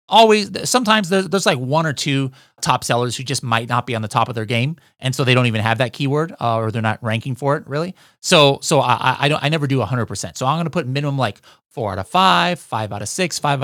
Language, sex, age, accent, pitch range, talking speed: English, male, 30-49, American, 120-160 Hz, 275 wpm